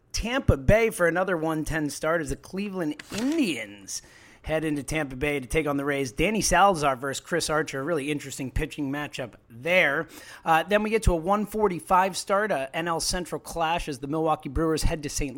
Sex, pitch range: male, 145-195 Hz